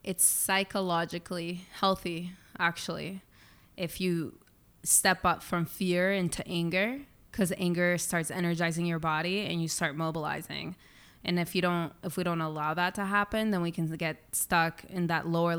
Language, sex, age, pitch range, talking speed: English, female, 20-39, 160-180 Hz, 160 wpm